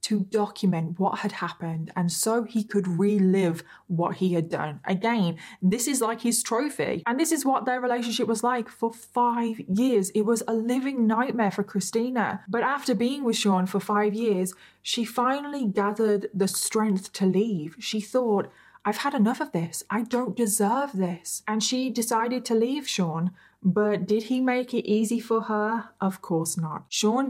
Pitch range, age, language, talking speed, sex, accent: 185-230 Hz, 20-39, English, 180 wpm, female, British